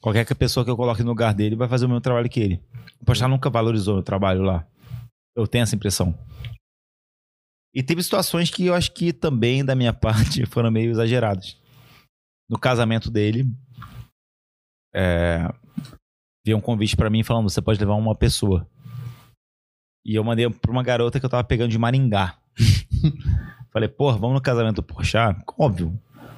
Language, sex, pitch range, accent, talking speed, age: Portuguese, male, 105-125 Hz, Brazilian, 175 wpm, 20-39